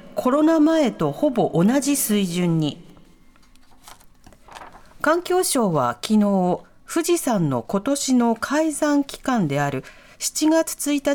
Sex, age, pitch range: female, 40-59, 190-275 Hz